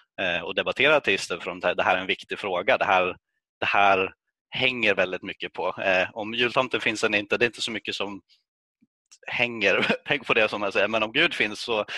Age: 30-49